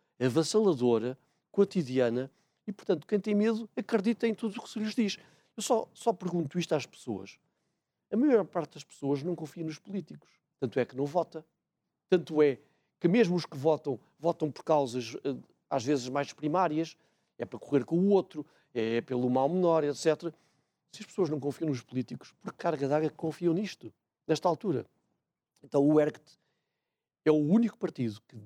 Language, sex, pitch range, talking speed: Portuguese, male, 135-180 Hz, 175 wpm